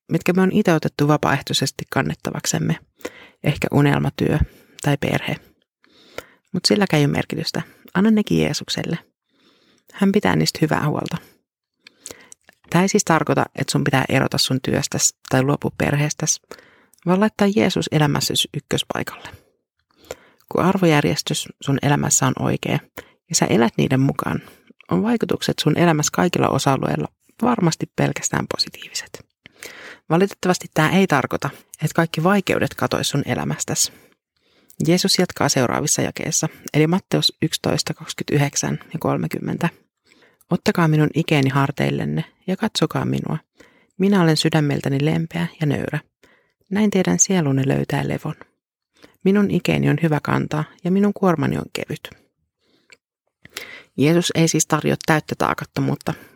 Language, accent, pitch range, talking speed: Finnish, native, 145-185 Hz, 120 wpm